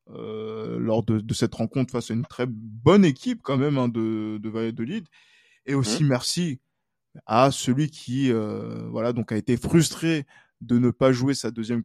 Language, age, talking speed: French, 20-39, 185 wpm